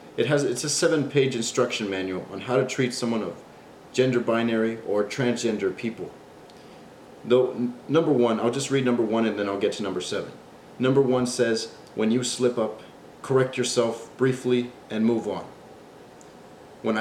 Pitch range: 100-125 Hz